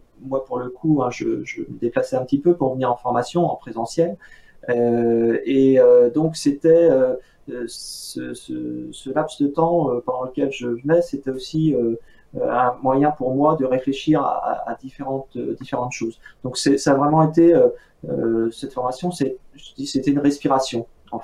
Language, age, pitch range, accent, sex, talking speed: French, 30-49, 120-145 Hz, French, male, 180 wpm